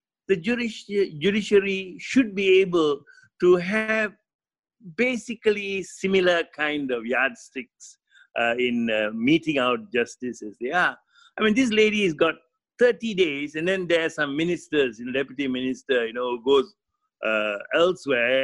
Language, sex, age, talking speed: English, male, 60-79, 145 wpm